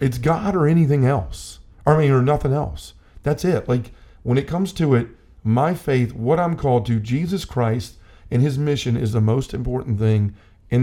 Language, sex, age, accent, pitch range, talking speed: English, male, 50-69, American, 110-145 Hz, 195 wpm